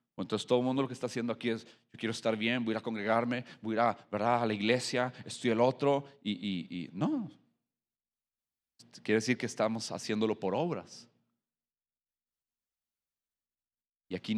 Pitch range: 95-130 Hz